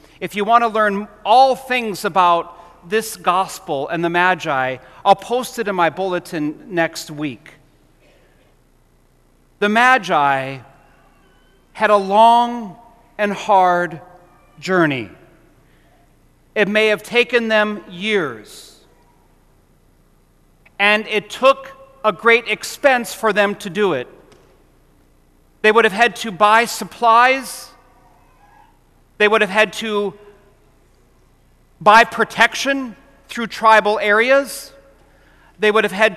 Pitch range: 175-230 Hz